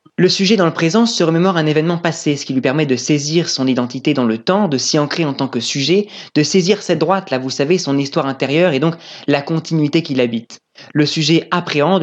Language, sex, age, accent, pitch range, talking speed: French, male, 20-39, French, 140-180 Hz, 235 wpm